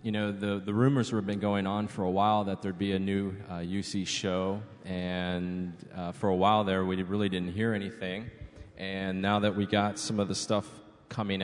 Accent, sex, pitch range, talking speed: American, male, 90-100 Hz, 215 wpm